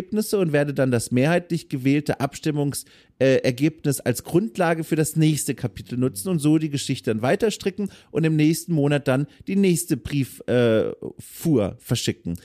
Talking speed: 150 wpm